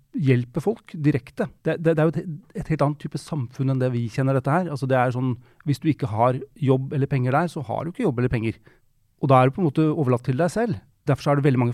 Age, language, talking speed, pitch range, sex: 30-49, Danish, 280 wpm, 130-160 Hz, male